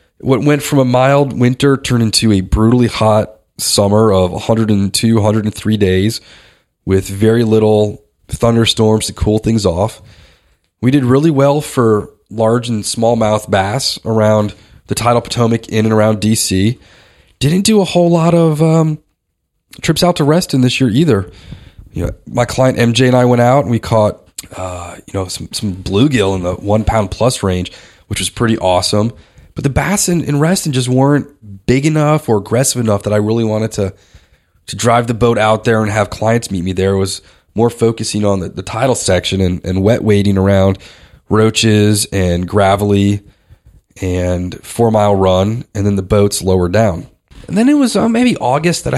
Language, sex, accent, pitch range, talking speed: English, male, American, 100-130 Hz, 180 wpm